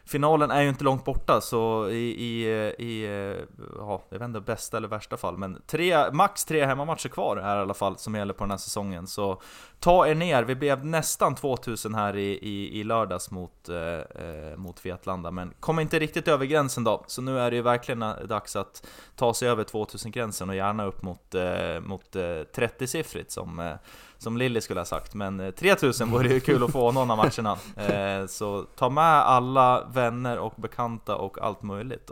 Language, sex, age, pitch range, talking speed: Swedish, male, 20-39, 100-130 Hz, 200 wpm